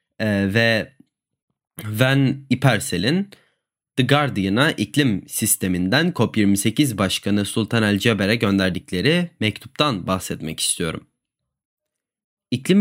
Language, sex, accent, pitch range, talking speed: Turkish, male, native, 95-140 Hz, 75 wpm